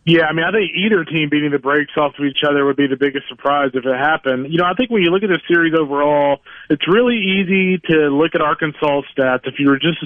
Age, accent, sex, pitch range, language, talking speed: 30-49, American, male, 135-160 Hz, English, 275 wpm